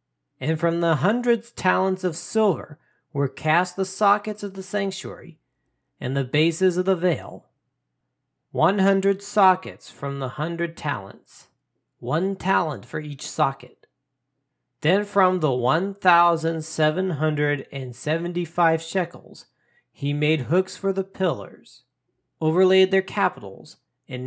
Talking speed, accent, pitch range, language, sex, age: 130 wpm, American, 130-185 Hz, English, male, 40-59